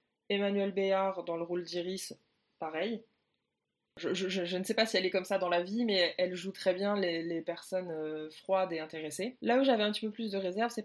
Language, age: French, 20-39